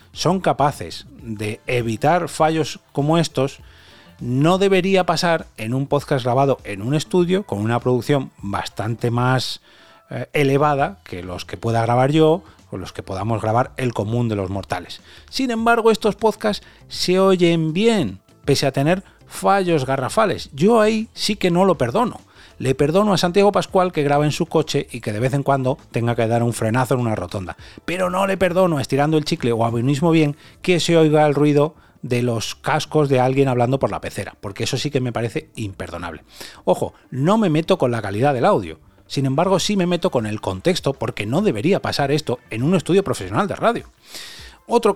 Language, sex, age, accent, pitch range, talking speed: Spanish, male, 30-49, Spanish, 115-175 Hz, 195 wpm